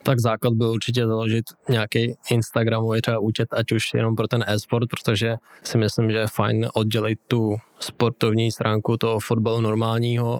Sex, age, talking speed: male, 20-39, 160 wpm